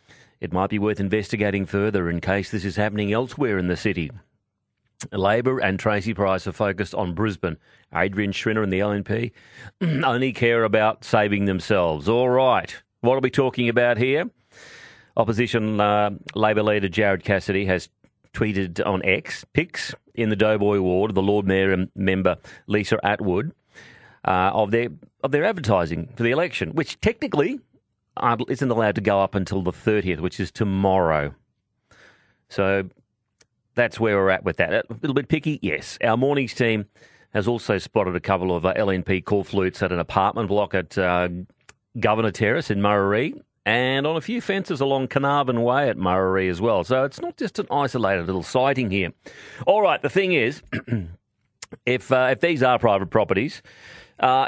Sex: male